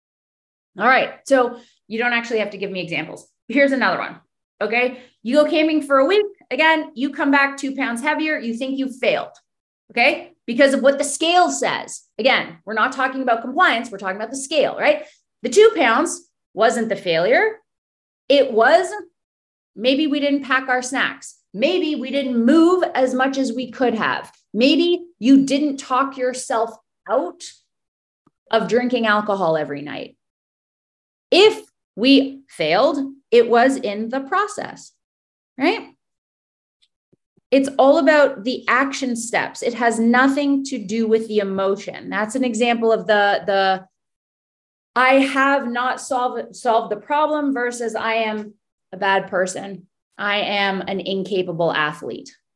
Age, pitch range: 30-49, 220-280 Hz